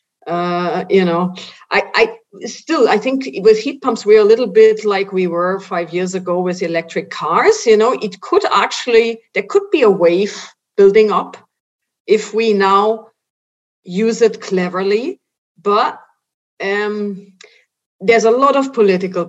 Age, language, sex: 50-69, English, female